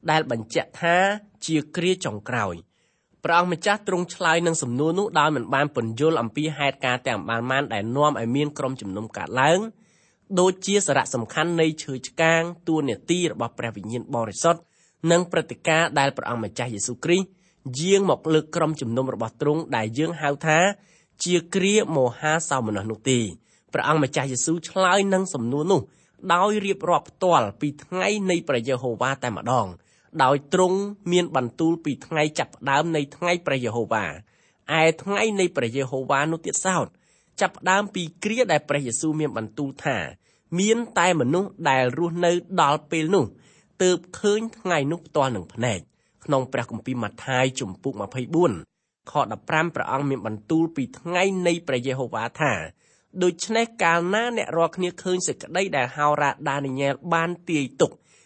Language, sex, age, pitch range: English, male, 20-39, 130-175 Hz